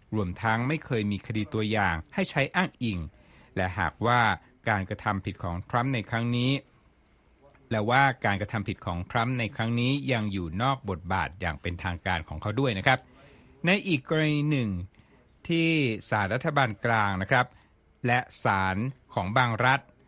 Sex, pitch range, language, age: male, 100-135 Hz, Thai, 60-79